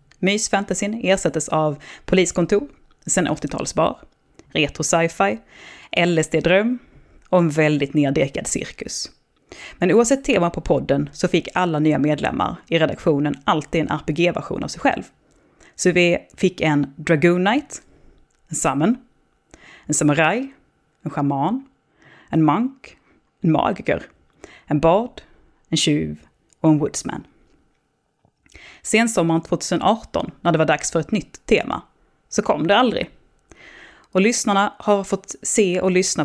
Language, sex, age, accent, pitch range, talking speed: Swedish, female, 30-49, native, 155-195 Hz, 125 wpm